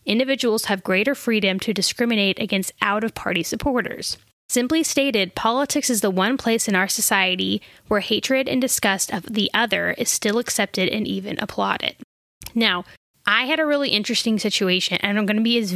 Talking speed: 170 wpm